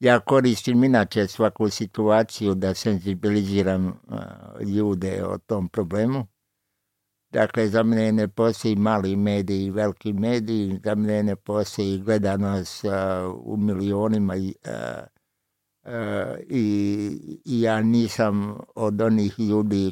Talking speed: 110 wpm